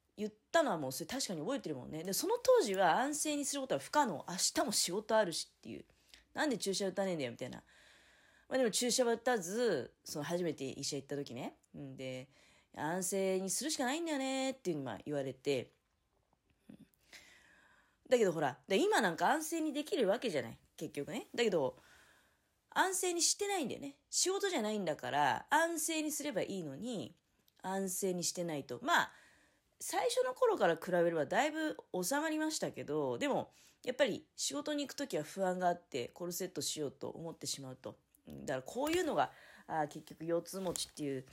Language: Japanese